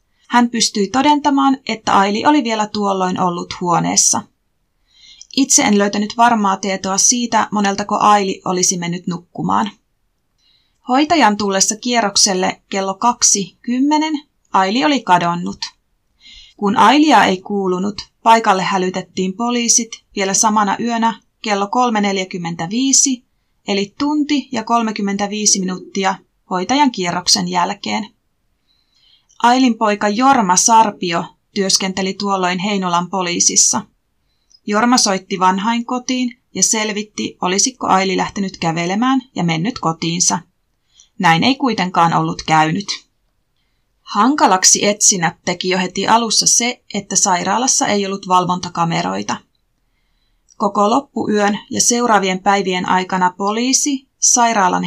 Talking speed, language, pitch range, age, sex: 100 wpm, Finnish, 190-240 Hz, 30-49, female